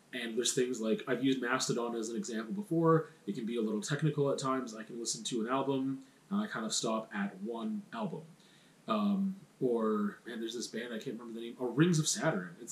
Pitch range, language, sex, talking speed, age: 125-205 Hz, English, male, 230 wpm, 30-49